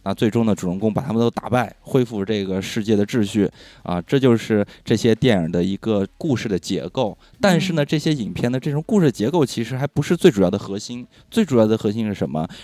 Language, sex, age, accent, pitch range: Chinese, male, 20-39, native, 100-140 Hz